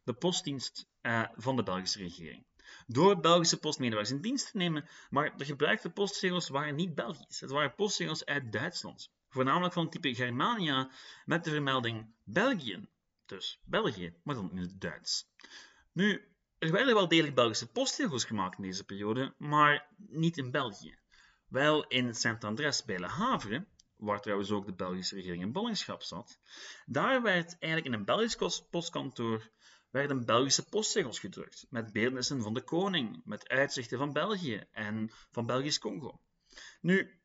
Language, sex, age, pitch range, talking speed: Dutch, male, 30-49, 115-170 Hz, 155 wpm